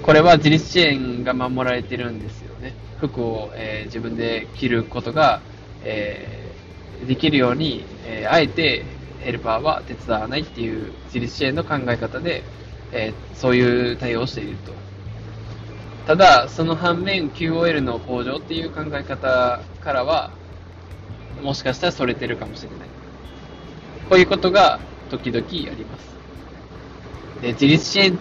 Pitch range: 110-150 Hz